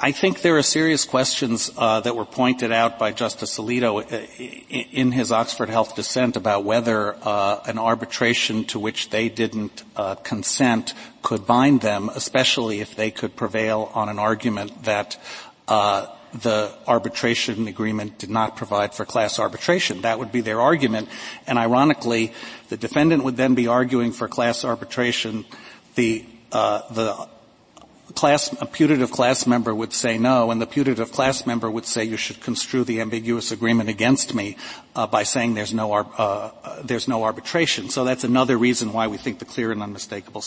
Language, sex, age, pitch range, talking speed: English, male, 50-69, 110-125 Hz, 170 wpm